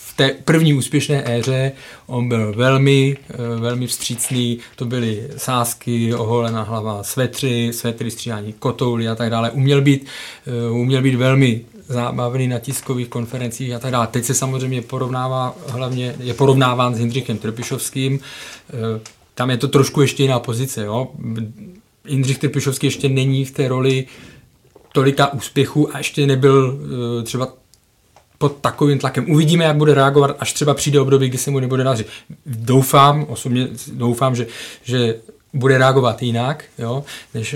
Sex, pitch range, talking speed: male, 120-135 Hz, 140 wpm